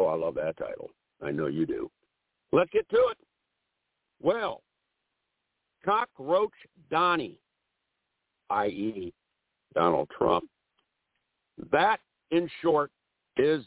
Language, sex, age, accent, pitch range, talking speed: English, male, 60-79, American, 120-160 Hz, 100 wpm